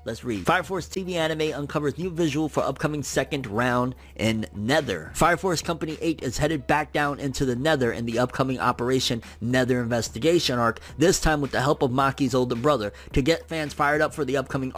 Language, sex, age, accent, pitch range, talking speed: English, male, 30-49, American, 115-155 Hz, 205 wpm